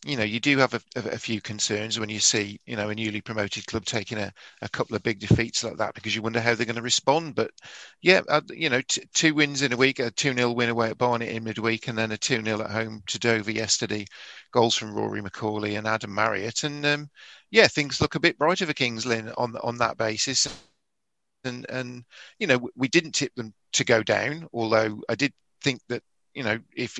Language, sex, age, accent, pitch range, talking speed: English, male, 40-59, British, 110-130 Hz, 225 wpm